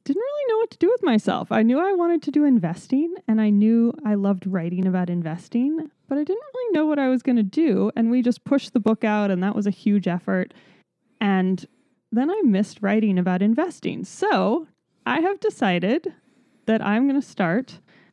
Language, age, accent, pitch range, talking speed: English, 20-39, American, 185-250 Hz, 210 wpm